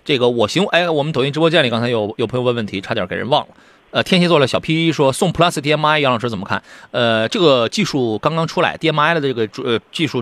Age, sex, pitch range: 30-49, male, 125-195 Hz